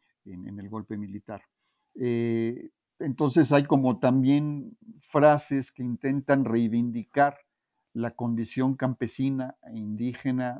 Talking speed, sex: 110 wpm, male